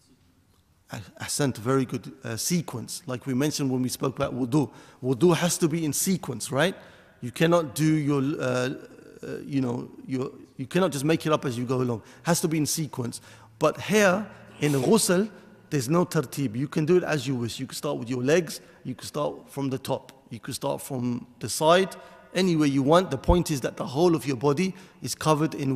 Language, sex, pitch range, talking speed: English, male, 135-175 Hz, 215 wpm